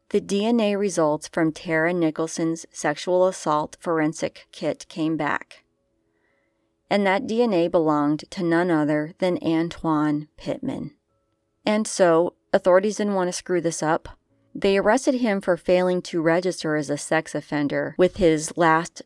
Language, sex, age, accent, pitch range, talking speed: English, female, 30-49, American, 160-210 Hz, 140 wpm